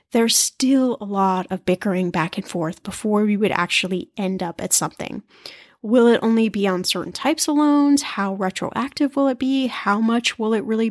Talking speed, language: 200 wpm, English